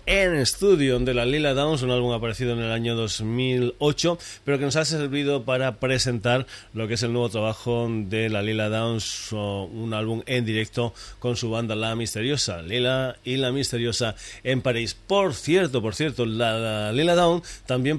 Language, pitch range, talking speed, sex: Spanish, 110-130 Hz, 175 wpm, male